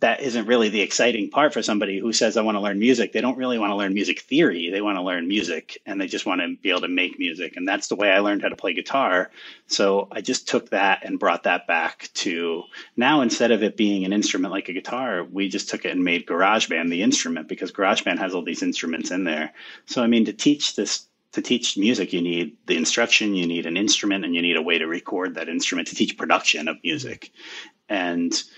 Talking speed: 245 wpm